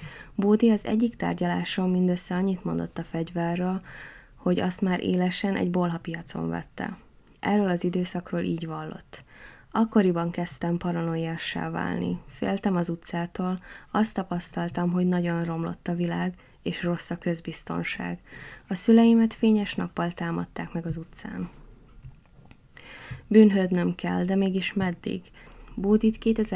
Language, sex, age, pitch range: Hungarian, female, 20-39, 170-195 Hz